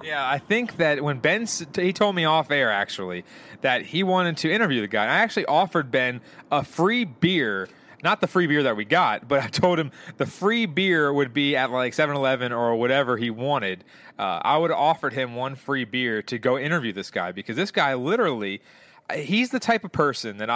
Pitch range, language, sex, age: 125-175 Hz, English, male, 30-49